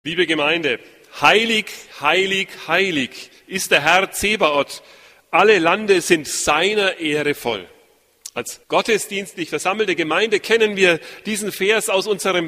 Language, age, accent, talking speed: German, 40-59, German, 120 wpm